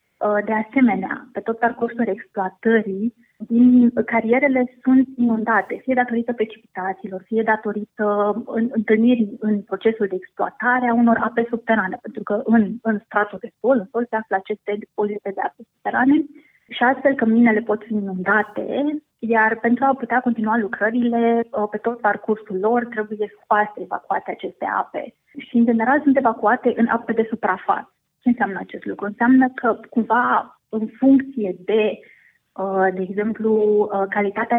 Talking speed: 145 wpm